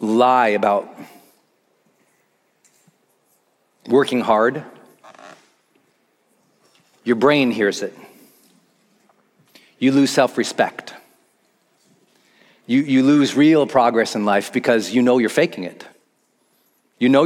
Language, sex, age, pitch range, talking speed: English, male, 40-59, 125-205 Hz, 90 wpm